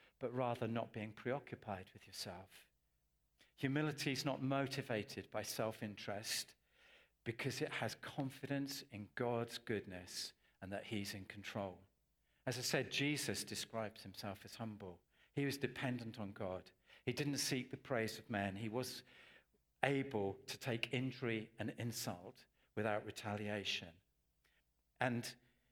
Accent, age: British, 50-69